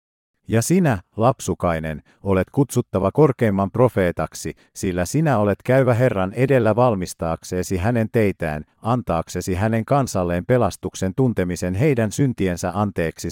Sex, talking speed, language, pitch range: male, 110 wpm, Finnish, 90-130 Hz